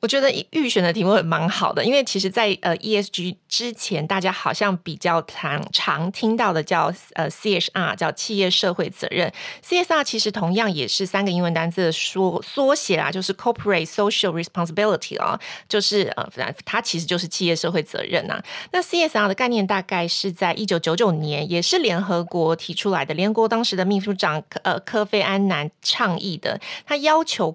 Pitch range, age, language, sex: 175-220 Hz, 30-49, Chinese, female